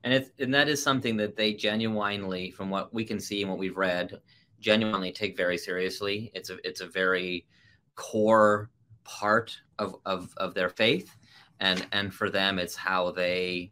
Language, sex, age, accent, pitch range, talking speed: English, male, 30-49, American, 95-110 Hz, 180 wpm